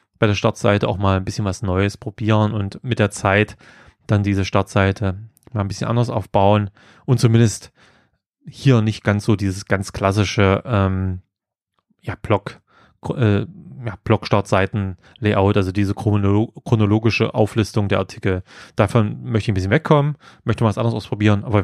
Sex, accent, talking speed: male, German, 145 wpm